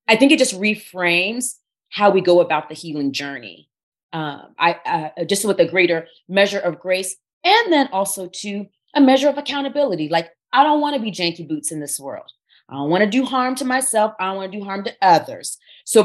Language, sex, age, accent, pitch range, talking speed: English, female, 30-49, American, 155-205 Hz, 215 wpm